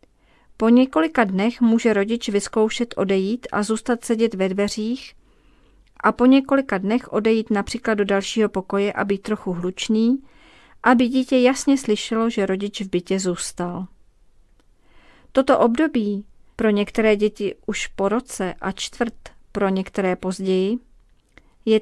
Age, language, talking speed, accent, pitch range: 40-59, Czech, 130 wpm, native, 200-235 Hz